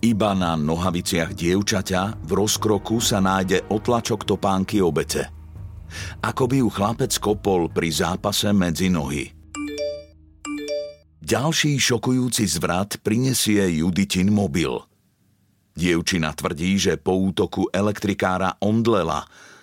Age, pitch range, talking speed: 50-69, 90-115 Hz, 100 wpm